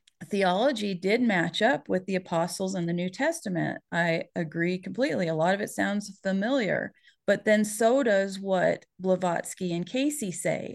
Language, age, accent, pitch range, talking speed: English, 40-59, American, 175-215 Hz, 160 wpm